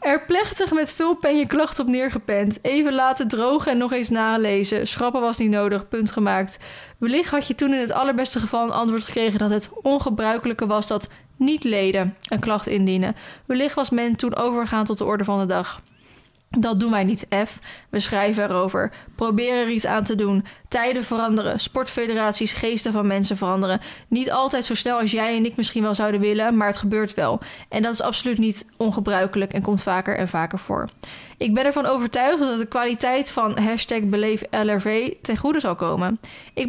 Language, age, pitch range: Dutch, 20-39, 210-250 Hz